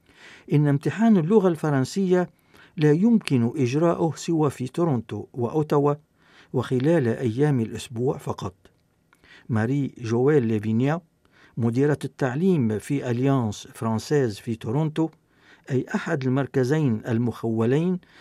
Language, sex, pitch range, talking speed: Arabic, male, 120-160 Hz, 95 wpm